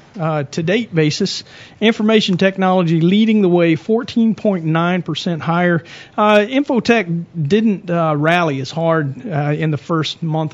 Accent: American